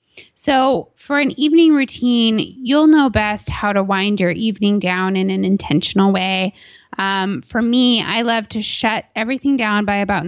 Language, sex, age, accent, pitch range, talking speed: English, female, 20-39, American, 200-245 Hz, 170 wpm